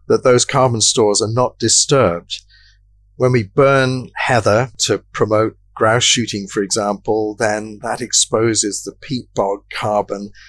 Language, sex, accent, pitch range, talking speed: English, male, British, 105-130 Hz, 135 wpm